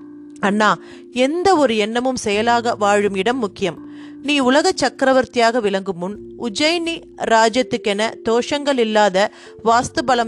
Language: Tamil